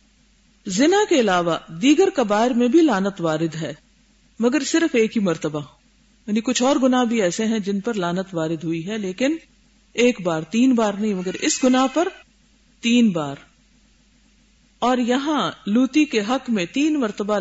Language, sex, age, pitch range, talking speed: Urdu, female, 50-69, 210-255 Hz, 165 wpm